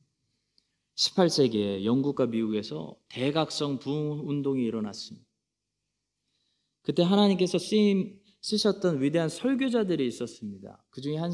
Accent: native